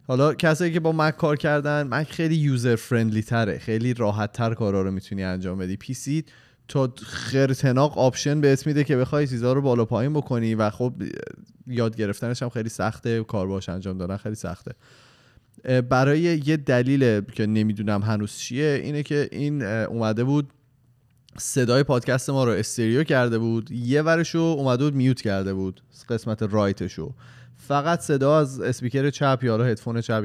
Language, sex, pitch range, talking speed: Persian, male, 115-140 Hz, 165 wpm